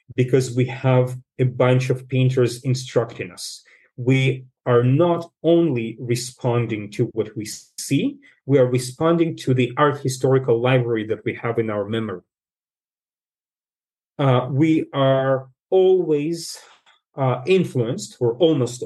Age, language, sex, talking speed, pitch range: 40-59, English, male, 125 wpm, 125-160 Hz